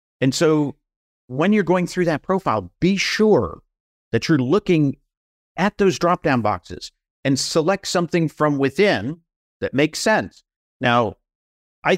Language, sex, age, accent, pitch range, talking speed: English, male, 50-69, American, 120-160 Hz, 140 wpm